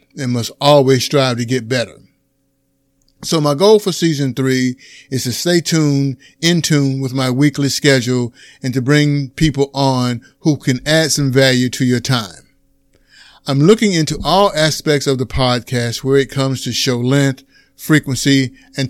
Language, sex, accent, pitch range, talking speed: English, male, American, 130-150 Hz, 165 wpm